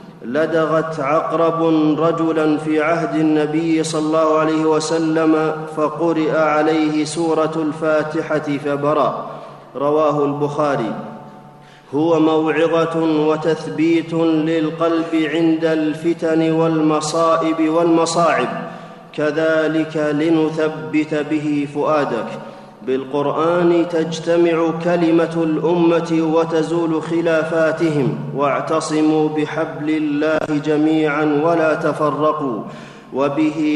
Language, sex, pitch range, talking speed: Arabic, male, 155-165 Hz, 75 wpm